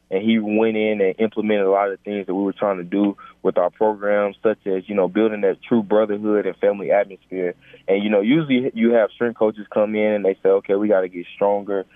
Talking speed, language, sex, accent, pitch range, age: 240 wpm, English, male, American, 95-110 Hz, 20-39